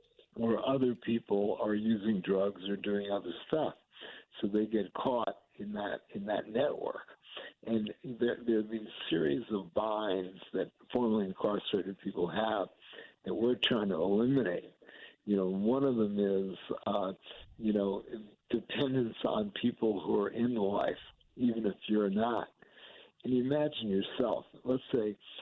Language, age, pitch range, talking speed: English, 60-79, 100-120 Hz, 150 wpm